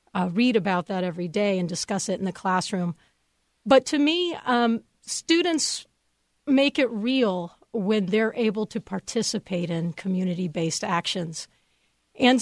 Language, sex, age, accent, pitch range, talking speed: English, female, 40-59, American, 175-225 Hz, 140 wpm